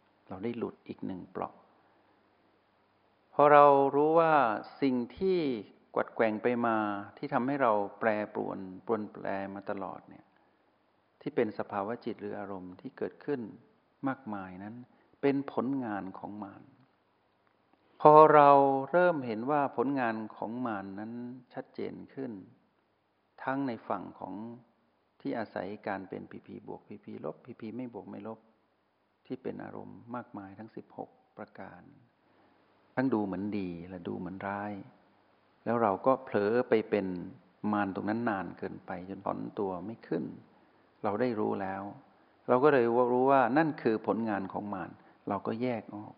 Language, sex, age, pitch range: Thai, male, 60-79, 100-125 Hz